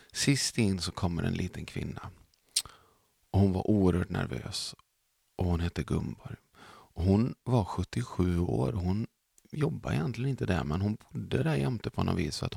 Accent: native